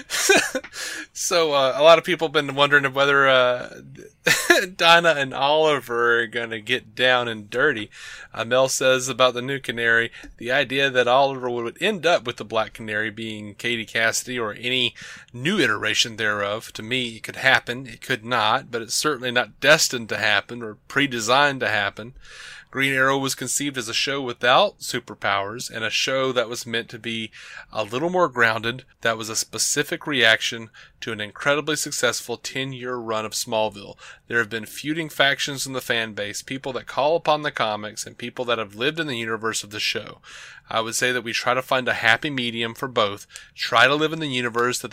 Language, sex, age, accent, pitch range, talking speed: English, male, 30-49, American, 115-135 Hz, 195 wpm